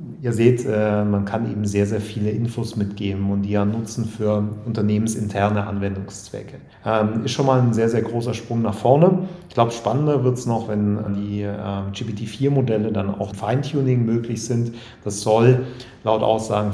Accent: German